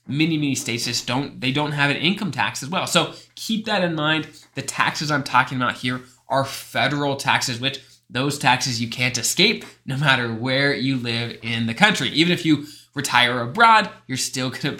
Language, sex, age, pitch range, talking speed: English, male, 20-39, 125-170 Hz, 205 wpm